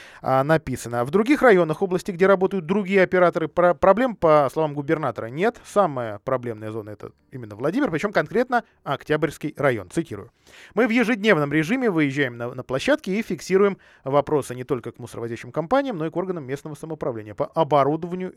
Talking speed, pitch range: 165 wpm, 125-195 Hz